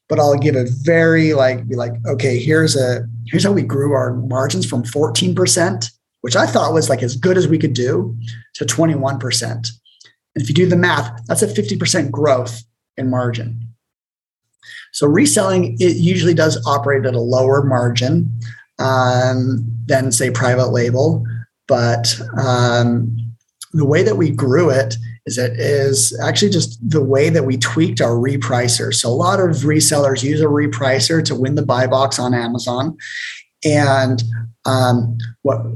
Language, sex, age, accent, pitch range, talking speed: English, male, 30-49, American, 120-150 Hz, 170 wpm